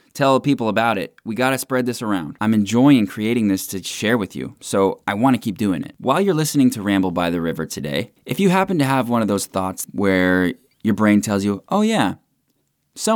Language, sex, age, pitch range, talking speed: English, male, 20-39, 95-140 Hz, 235 wpm